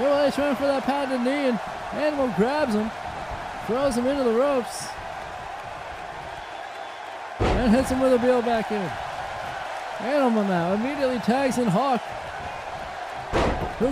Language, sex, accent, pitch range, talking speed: English, male, American, 230-265 Hz, 130 wpm